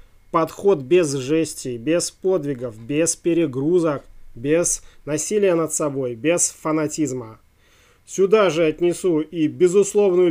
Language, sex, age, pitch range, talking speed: Russian, male, 30-49, 120-180 Hz, 105 wpm